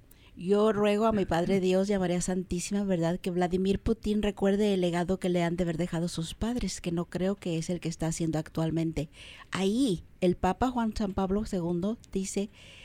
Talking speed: 200 wpm